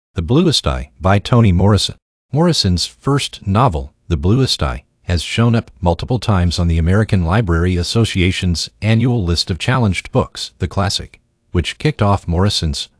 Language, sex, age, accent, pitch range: Chinese, male, 50-69, American, 85-110 Hz